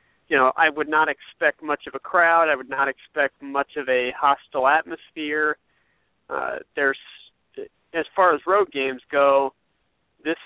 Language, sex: English, male